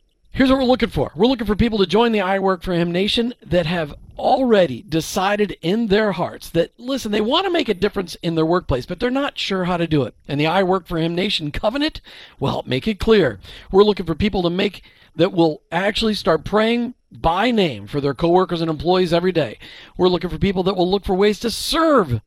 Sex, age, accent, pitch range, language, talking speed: male, 50-69, American, 160-215 Hz, English, 235 wpm